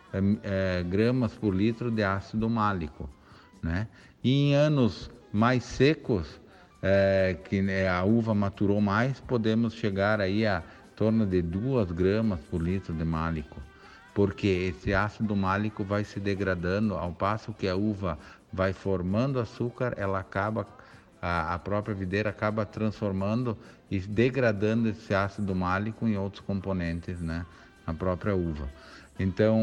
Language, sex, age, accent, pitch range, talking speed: Portuguese, male, 50-69, Brazilian, 95-115 Hz, 140 wpm